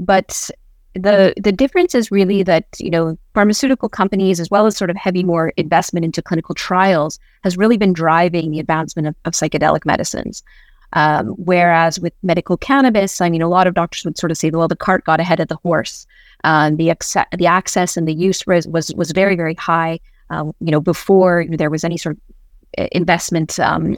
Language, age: English, 30-49